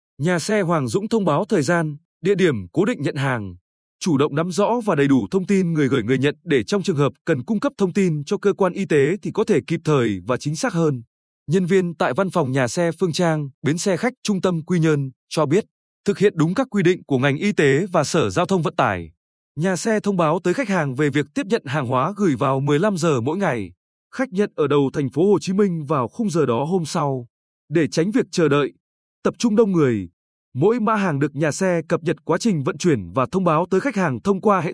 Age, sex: 20-39, male